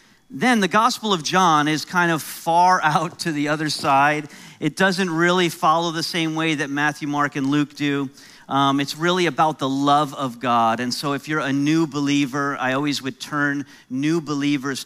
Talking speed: 195 wpm